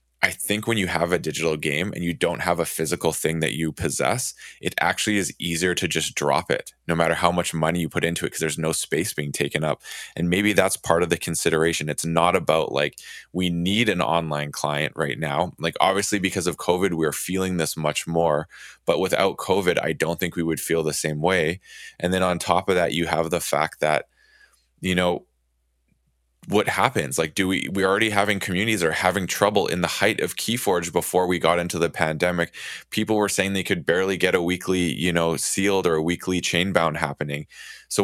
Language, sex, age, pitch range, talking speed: English, male, 20-39, 80-90 Hz, 215 wpm